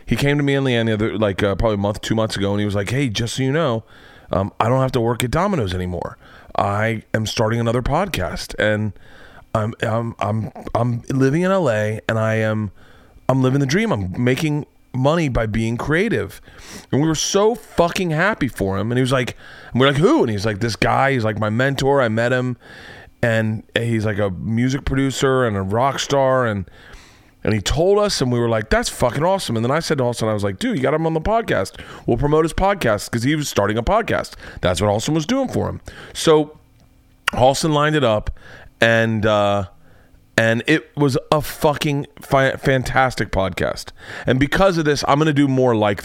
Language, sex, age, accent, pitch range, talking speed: English, male, 30-49, American, 110-140 Hz, 220 wpm